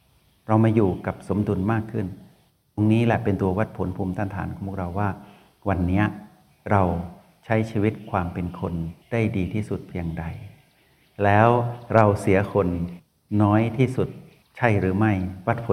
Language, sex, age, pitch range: Thai, male, 60-79, 95-115 Hz